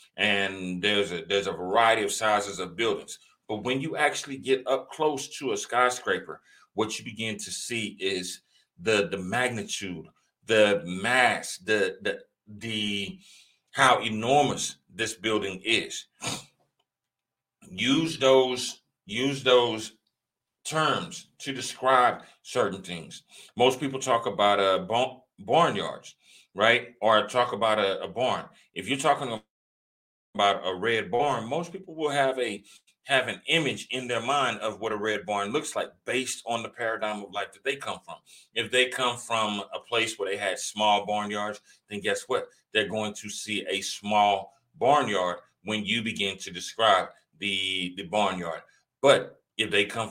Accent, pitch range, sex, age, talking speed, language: American, 100-125 Hz, male, 40-59, 155 wpm, English